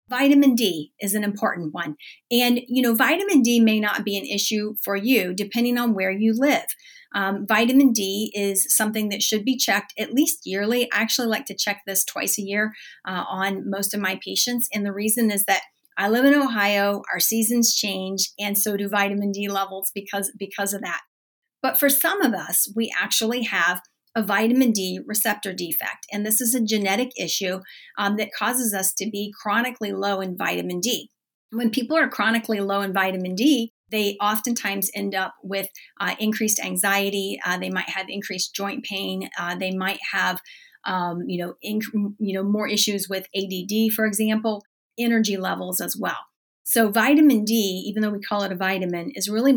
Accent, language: American, English